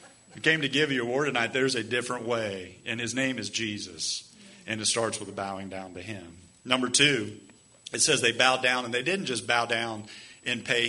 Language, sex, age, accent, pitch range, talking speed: English, male, 50-69, American, 110-140 Hz, 225 wpm